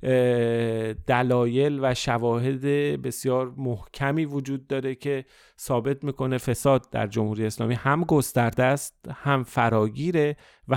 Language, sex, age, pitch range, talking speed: Persian, male, 30-49, 120-145 Hz, 110 wpm